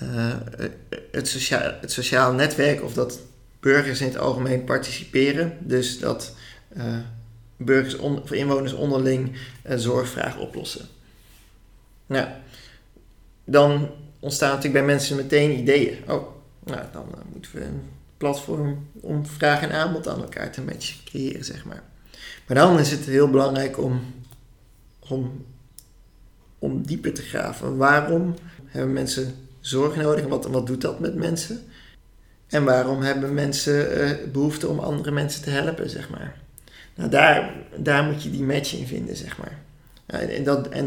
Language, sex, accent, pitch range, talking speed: Dutch, male, Dutch, 125-145 Hz, 150 wpm